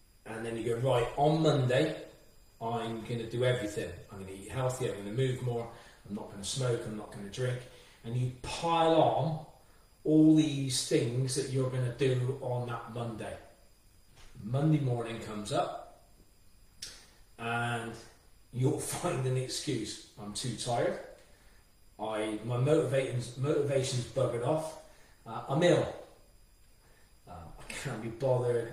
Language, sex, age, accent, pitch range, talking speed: English, male, 30-49, British, 115-135 Hz, 140 wpm